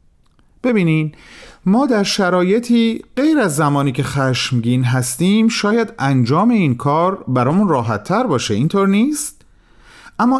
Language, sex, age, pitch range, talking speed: Persian, male, 40-59, 125-210 Hz, 115 wpm